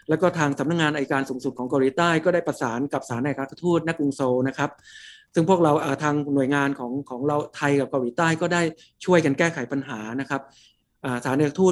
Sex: male